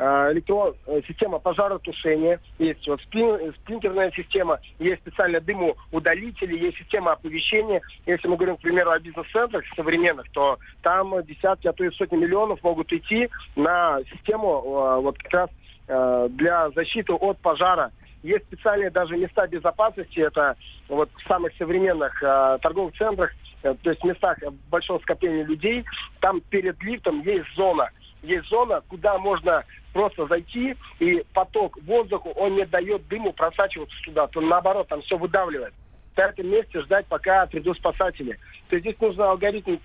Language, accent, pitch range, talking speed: Russian, native, 165-205 Hz, 145 wpm